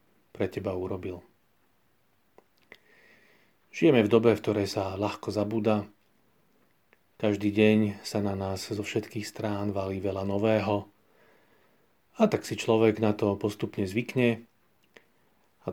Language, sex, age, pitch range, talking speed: Slovak, male, 30-49, 100-110 Hz, 120 wpm